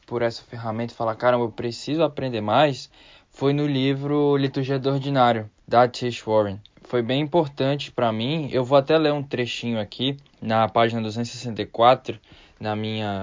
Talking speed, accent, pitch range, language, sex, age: 165 wpm, Brazilian, 115-135 Hz, Portuguese, male, 10-29